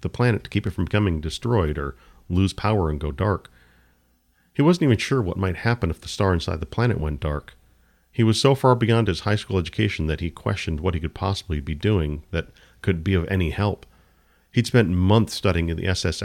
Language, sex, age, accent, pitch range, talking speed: English, male, 40-59, American, 80-110 Hz, 220 wpm